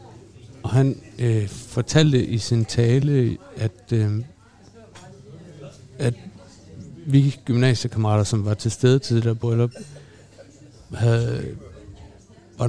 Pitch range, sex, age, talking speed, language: 110-130 Hz, male, 60-79, 100 wpm, Danish